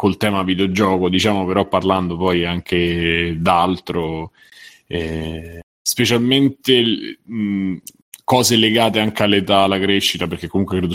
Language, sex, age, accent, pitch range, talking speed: Italian, male, 30-49, native, 90-110 Hz, 105 wpm